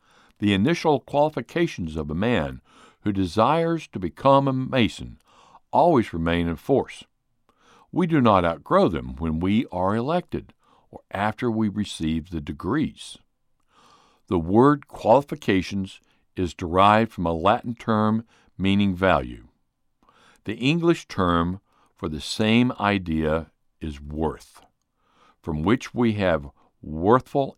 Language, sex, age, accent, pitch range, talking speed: English, male, 60-79, American, 85-130 Hz, 120 wpm